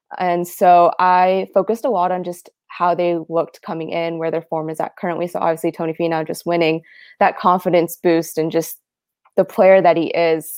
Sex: female